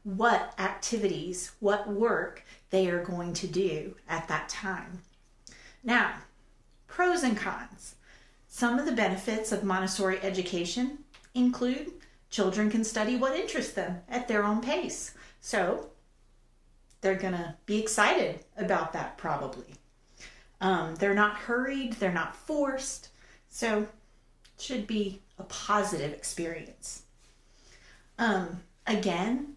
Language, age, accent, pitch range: English, 40-59, American, 190-230 Hz